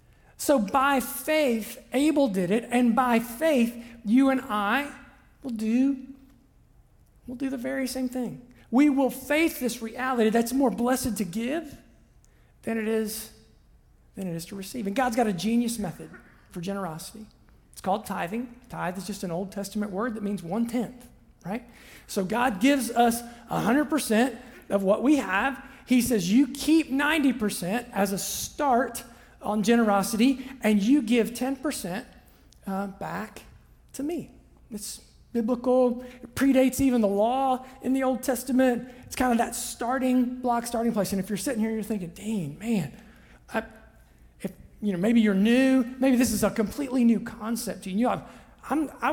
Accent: American